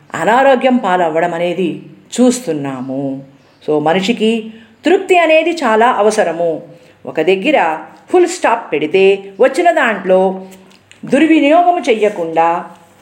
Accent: native